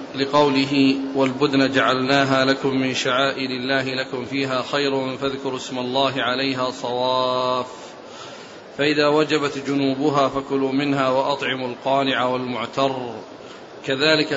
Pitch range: 135-150 Hz